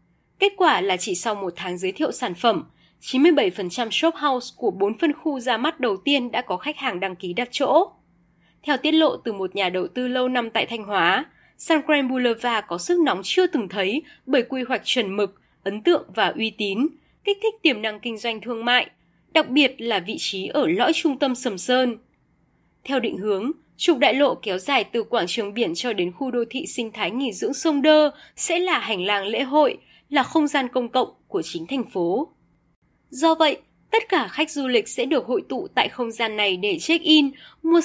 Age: 20-39